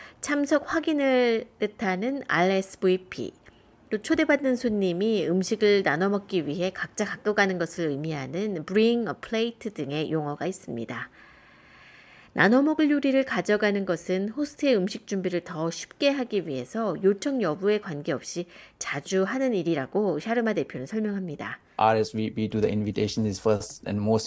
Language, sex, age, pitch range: Korean, female, 30-49, 135-220 Hz